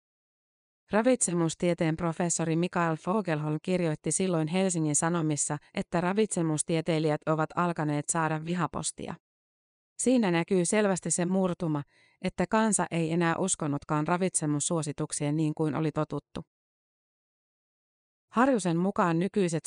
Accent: native